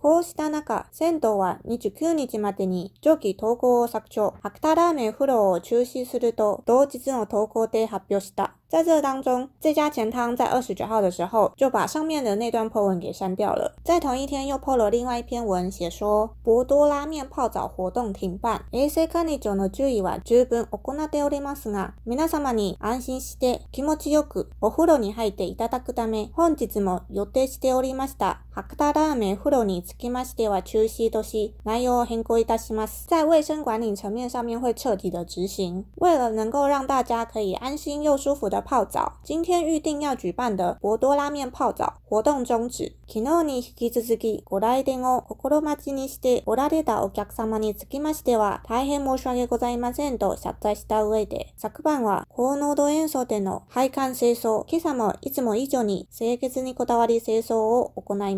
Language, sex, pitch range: Chinese, female, 215-280 Hz